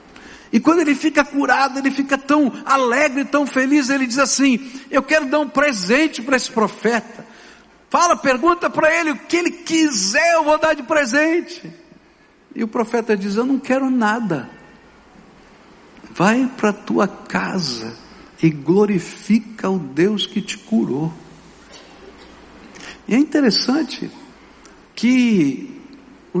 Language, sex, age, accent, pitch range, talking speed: Portuguese, male, 70-89, Brazilian, 185-270 Hz, 135 wpm